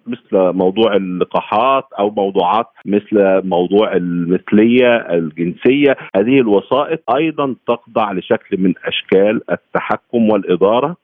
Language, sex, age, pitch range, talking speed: Arabic, male, 50-69, 100-125 Hz, 100 wpm